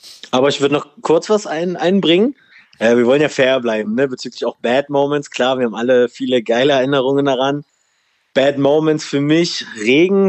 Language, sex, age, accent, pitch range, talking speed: German, male, 20-39, German, 120-140 Hz, 175 wpm